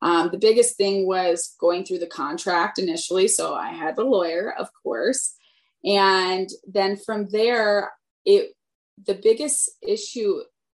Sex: female